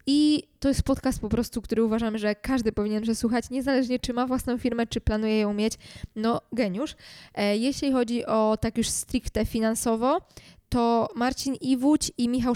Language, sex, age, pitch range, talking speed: Polish, female, 20-39, 220-255 Hz, 165 wpm